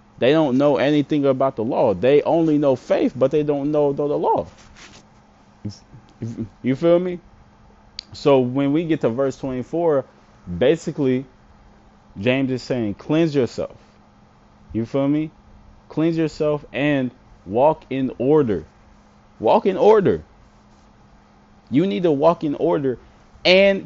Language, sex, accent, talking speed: English, male, American, 135 wpm